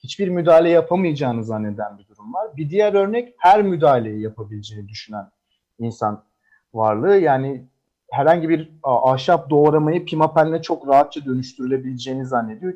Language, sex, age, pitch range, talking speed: Turkish, male, 40-59, 130-180 Hz, 120 wpm